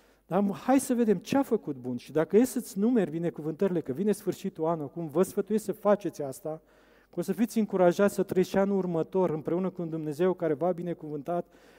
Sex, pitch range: male, 170-210 Hz